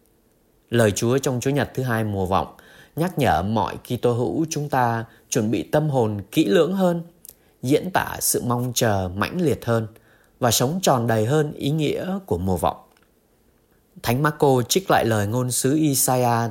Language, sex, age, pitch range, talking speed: Vietnamese, male, 20-39, 105-145 Hz, 180 wpm